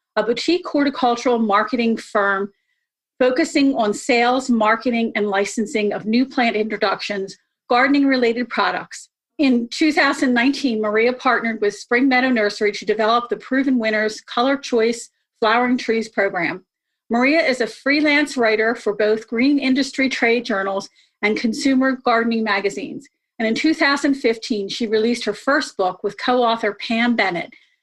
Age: 40-59